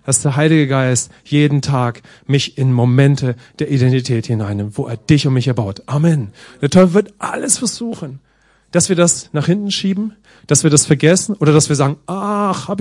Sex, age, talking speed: male, 40-59, 190 wpm